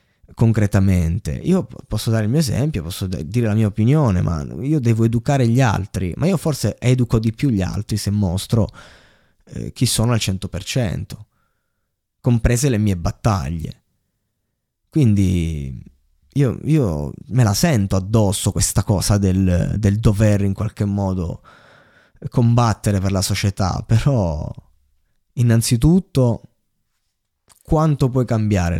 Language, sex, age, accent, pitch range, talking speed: Italian, male, 20-39, native, 95-125 Hz, 130 wpm